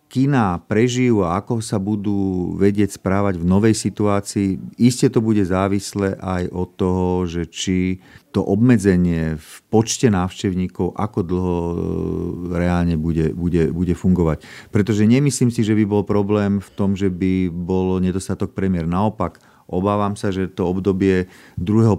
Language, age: Slovak, 40-59